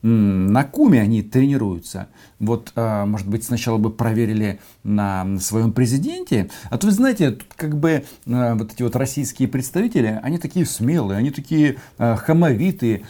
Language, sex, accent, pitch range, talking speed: Russian, male, native, 100-135 Hz, 135 wpm